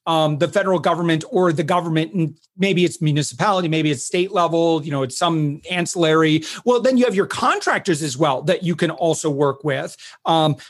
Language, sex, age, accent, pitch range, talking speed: English, male, 40-59, American, 150-175 Hz, 190 wpm